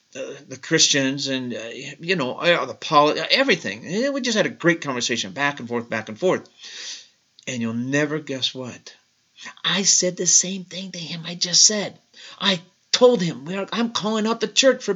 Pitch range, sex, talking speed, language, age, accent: 130-215 Hz, male, 185 wpm, English, 50-69, American